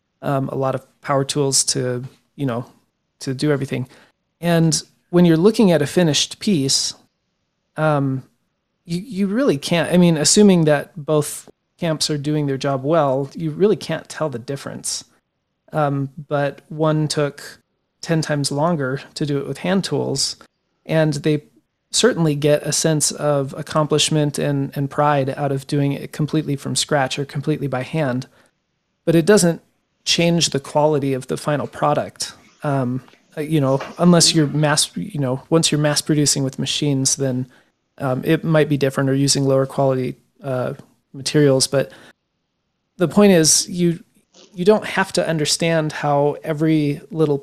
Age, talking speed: 30-49, 160 wpm